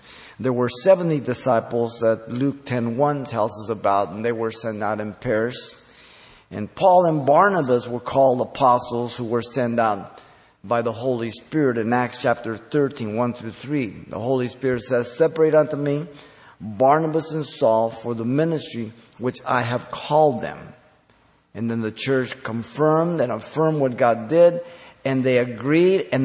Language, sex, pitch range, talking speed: English, male, 115-145 Hz, 160 wpm